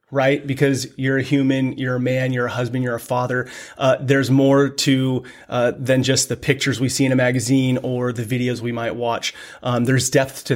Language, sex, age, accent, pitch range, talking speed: English, male, 30-49, American, 125-145 Hz, 215 wpm